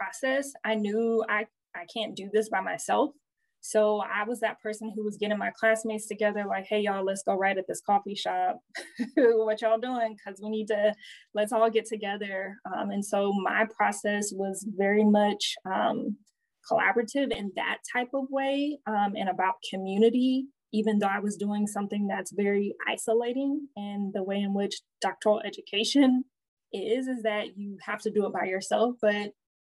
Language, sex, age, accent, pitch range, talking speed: English, female, 20-39, American, 200-230 Hz, 180 wpm